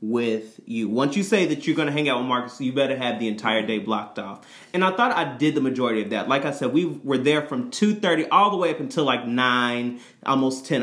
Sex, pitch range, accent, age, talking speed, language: male, 120-145 Hz, American, 30-49, 265 wpm, English